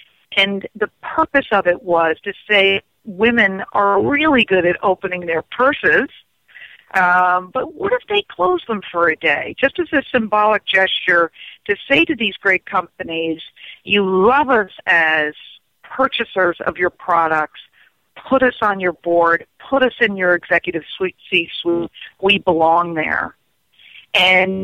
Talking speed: 150 wpm